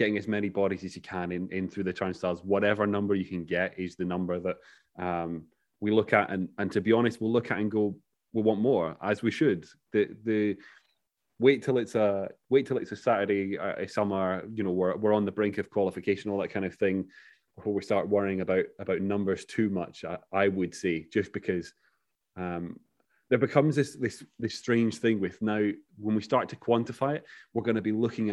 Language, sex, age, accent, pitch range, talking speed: English, male, 30-49, British, 95-115 Hz, 225 wpm